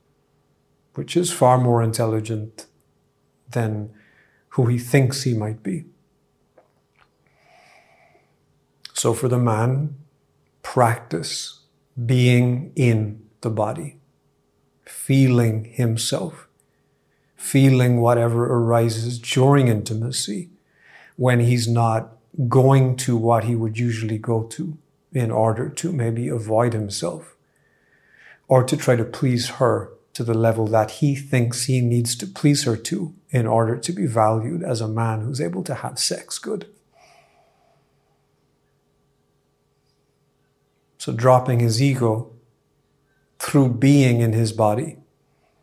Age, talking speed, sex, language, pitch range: 50-69, 115 wpm, male, English, 115-140 Hz